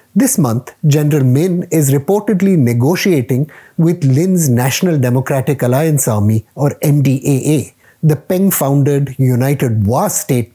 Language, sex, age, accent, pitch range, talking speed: English, male, 50-69, Indian, 125-170 Hz, 115 wpm